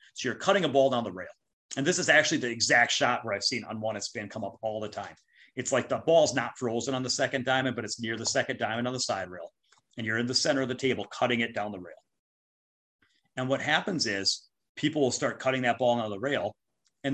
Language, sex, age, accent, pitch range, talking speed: English, male, 30-49, American, 110-135 Hz, 250 wpm